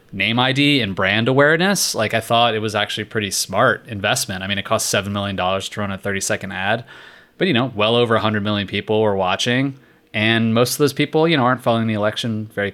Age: 20-39